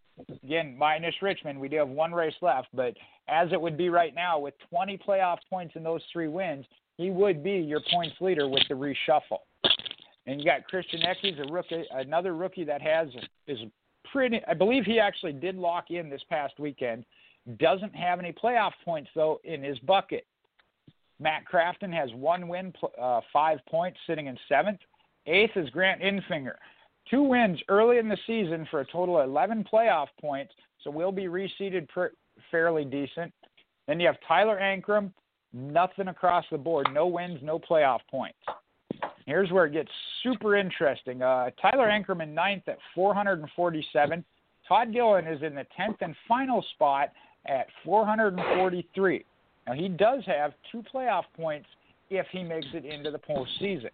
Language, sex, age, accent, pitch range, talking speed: English, male, 50-69, American, 155-195 Hz, 170 wpm